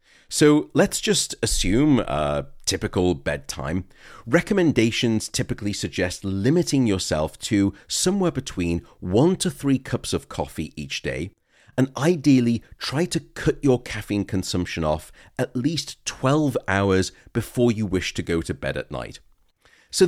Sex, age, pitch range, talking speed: male, 40-59, 90-130 Hz, 135 wpm